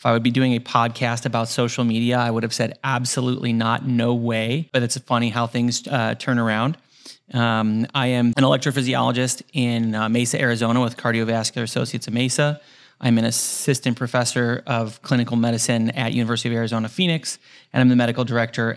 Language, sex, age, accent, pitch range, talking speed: English, male, 30-49, American, 115-130 Hz, 180 wpm